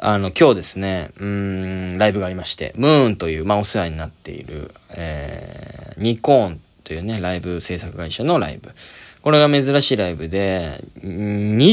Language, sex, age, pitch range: Japanese, male, 20-39, 90-145 Hz